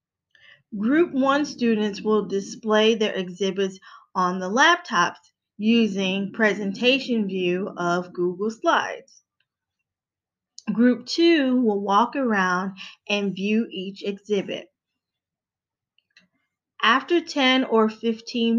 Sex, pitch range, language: female, 195-255 Hz, English